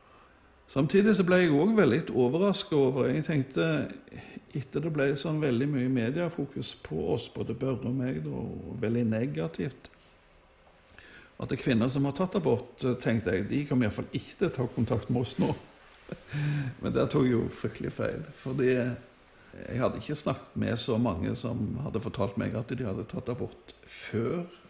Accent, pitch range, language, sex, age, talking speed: Swedish, 115-150 Hz, English, male, 60-79, 170 wpm